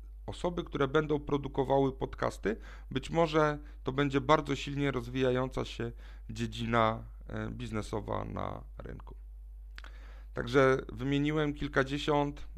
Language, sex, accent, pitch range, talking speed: Polish, male, native, 105-135 Hz, 95 wpm